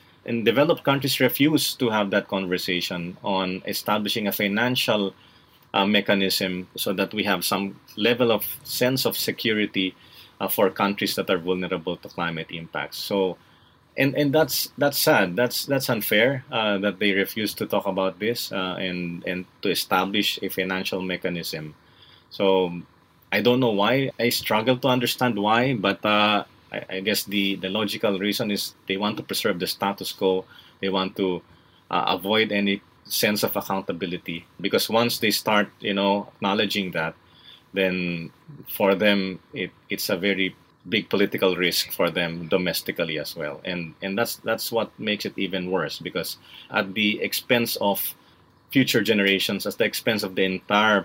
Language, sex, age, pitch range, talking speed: English, male, 20-39, 95-110 Hz, 160 wpm